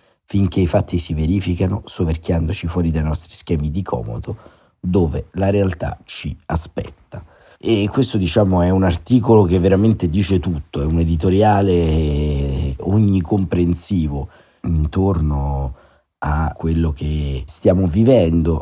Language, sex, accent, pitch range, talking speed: Italian, male, native, 75-95 Hz, 120 wpm